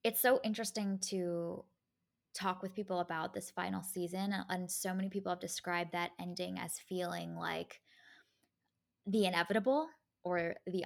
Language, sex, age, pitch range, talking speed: English, female, 20-39, 175-215 Hz, 145 wpm